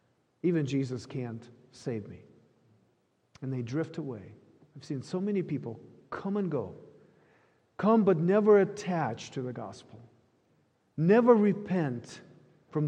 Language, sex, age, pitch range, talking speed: English, male, 50-69, 125-175 Hz, 125 wpm